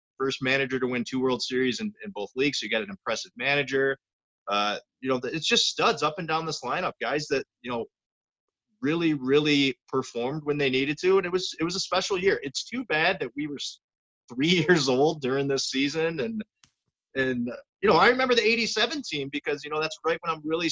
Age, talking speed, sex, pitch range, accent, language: 30-49, 215 wpm, male, 125-180 Hz, American, English